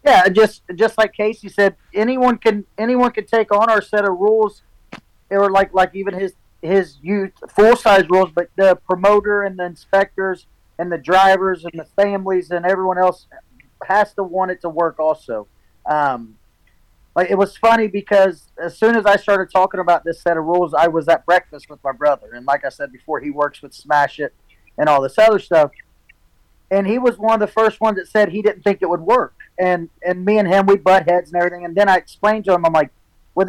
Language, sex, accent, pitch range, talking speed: English, male, American, 165-205 Hz, 220 wpm